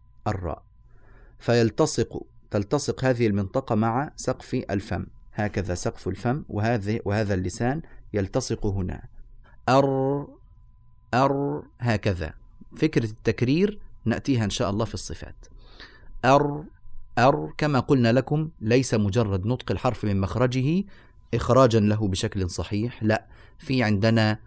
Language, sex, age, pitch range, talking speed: Arabic, male, 30-49, 105-130 Hz, 110 wpm